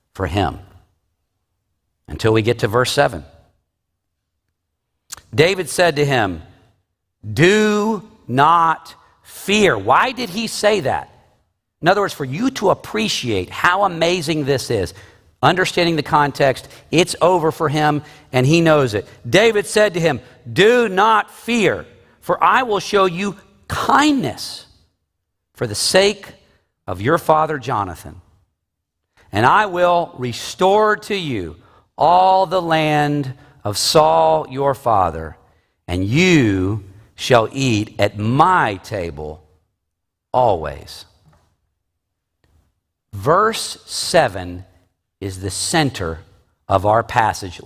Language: English